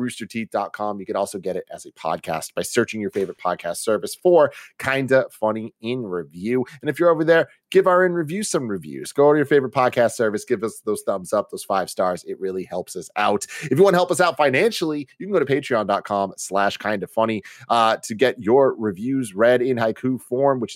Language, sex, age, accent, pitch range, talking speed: English, male, 30-49, American, 100-140 Hz, 215 wpm